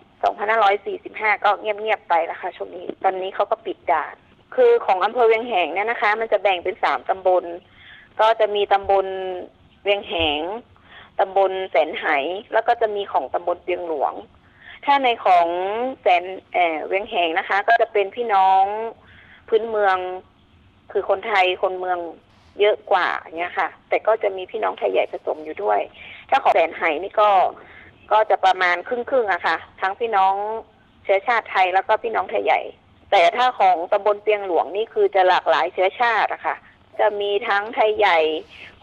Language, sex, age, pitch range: Thai, female, 20-39, 185-225 Hz